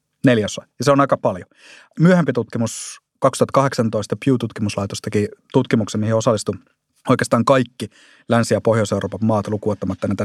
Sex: male